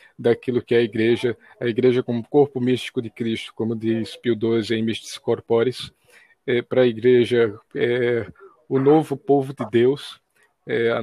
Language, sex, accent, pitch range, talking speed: Portuguese, male, Brazilian, 115-130 Hz, 150 wpm